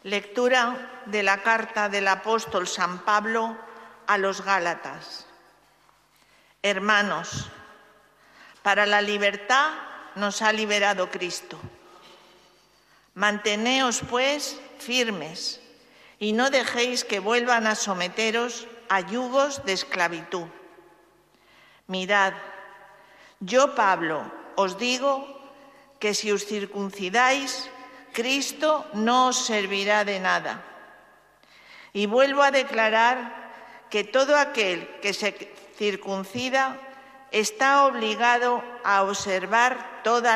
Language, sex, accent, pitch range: Spanish, female, Spanish, 200-255 Hz